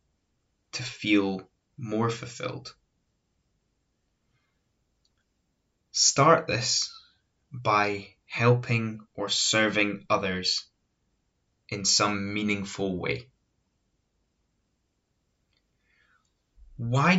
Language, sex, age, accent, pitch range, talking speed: English, male, 20-39, British, 100-130 Hz, 55 wpm